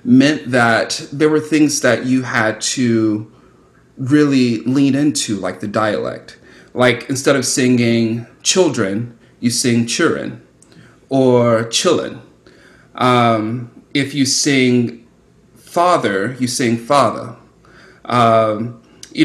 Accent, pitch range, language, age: American, 115-140 Hz, English, 30-49